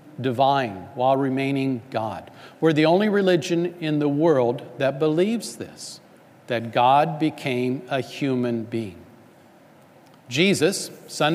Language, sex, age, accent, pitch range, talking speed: English, male, 50-69, American, 130-165 Hz, 115 wpm